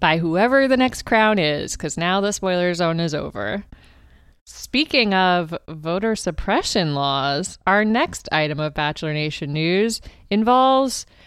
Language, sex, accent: English, female, American